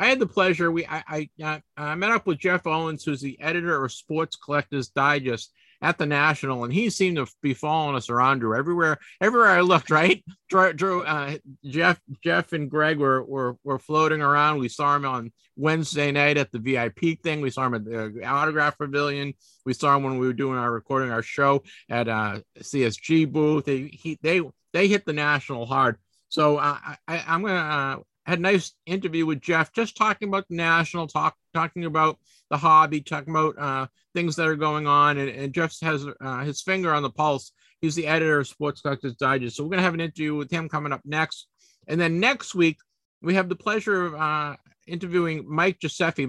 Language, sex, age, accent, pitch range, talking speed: English, male, 50-69, American, 140-170 Hz, 210 wpm